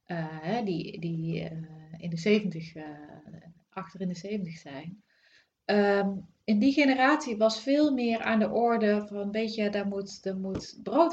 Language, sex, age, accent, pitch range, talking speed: Dutch, female, 30-49, Dutch, 175-220 Hz, 165 wpm